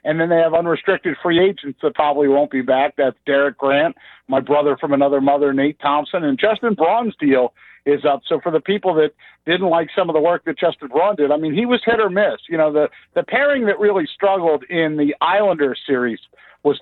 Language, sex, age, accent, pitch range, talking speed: English, male, 50-69, American, 140-185 Hz, 225 wpm